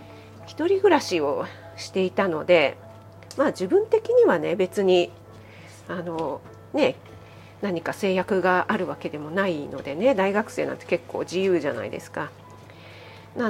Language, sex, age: Japanese, female, 40-59